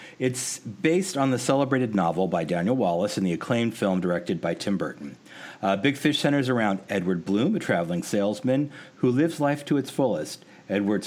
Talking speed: 185 wpm